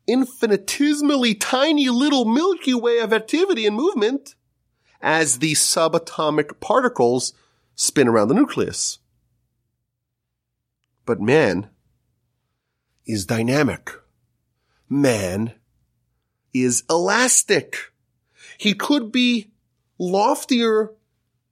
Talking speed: 80 wpm